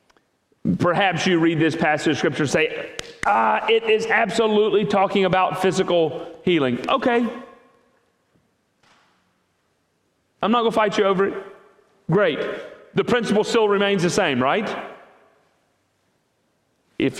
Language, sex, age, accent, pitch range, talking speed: English, male, 40-59, American, 175-245 Hz, 120 wpm